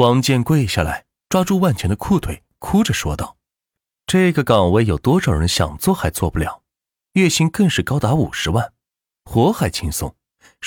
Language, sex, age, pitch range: Chinese, male, 30-49, 95-160 Hz